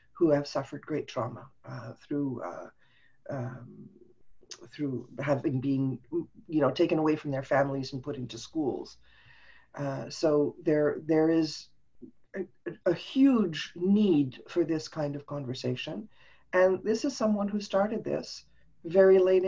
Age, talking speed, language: 50-69, 140 wpm, English